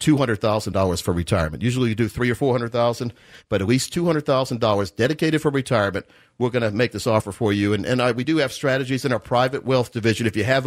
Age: 50-69